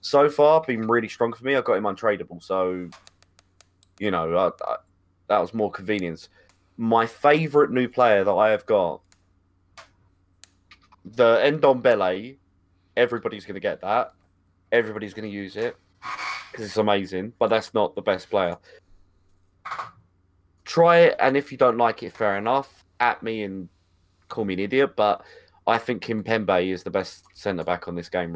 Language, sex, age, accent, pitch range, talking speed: English, male, 20-39, British, 90-110 Hz, 165 wpm